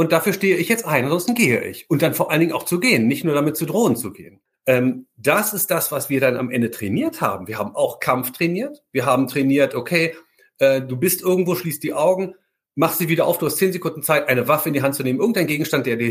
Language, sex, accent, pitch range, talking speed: German, male, German, 135-180 Hz, 265 wpm